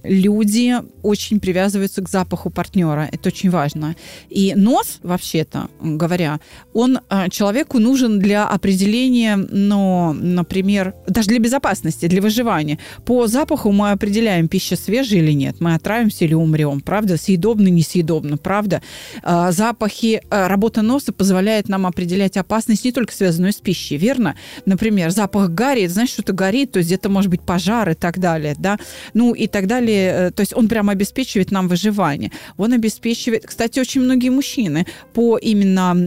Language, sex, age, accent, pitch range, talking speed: Russian, female, 30-49, native, 175-220 Hz, 150 wpm